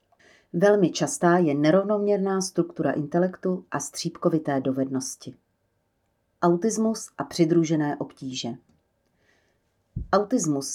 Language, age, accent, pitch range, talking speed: Czech, 40-59, native, 145-180 Hz, 80 wpm